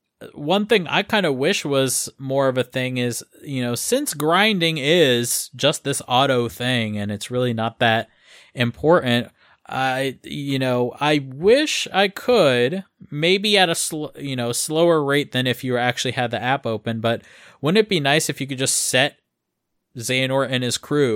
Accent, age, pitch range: American, 20-39, 120-145 Hz